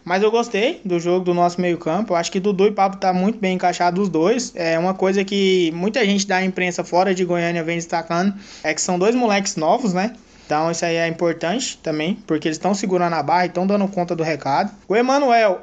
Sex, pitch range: male, 185-240 Hz